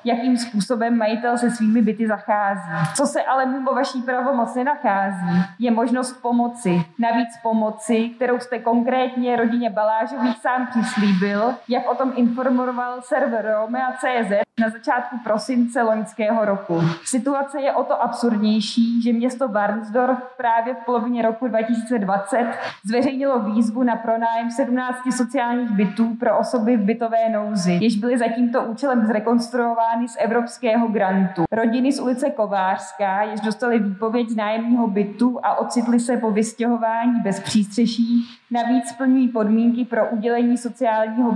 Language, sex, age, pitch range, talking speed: Czech, female, 20-39, 215-245 Hz, 135 wpm